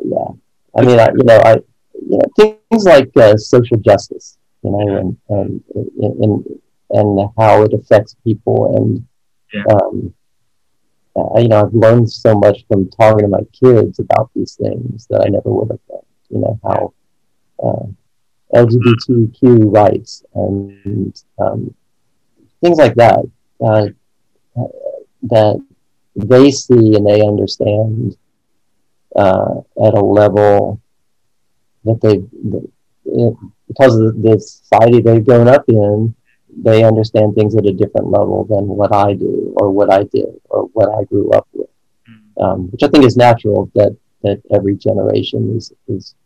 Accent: American